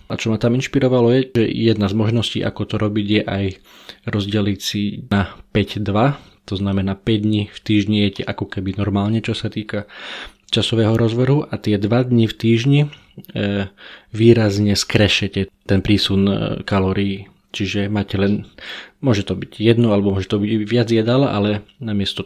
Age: 20-39